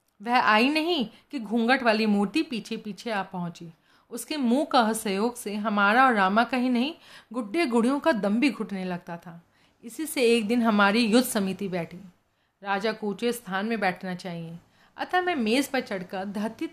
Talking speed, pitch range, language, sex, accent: 175 wpm, 195-260 Hz, Hindi, female, native